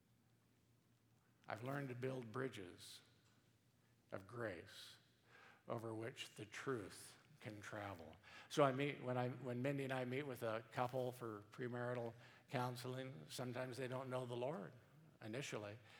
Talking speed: 135 wpm